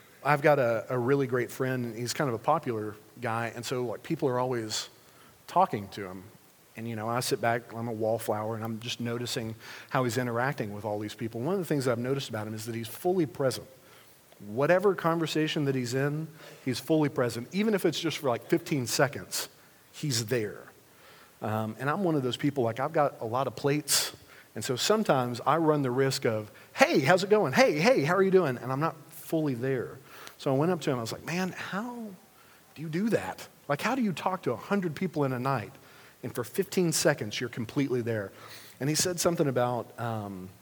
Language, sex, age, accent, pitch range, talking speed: English, male, 40-59, American, 115-160 Hz, 225 wpm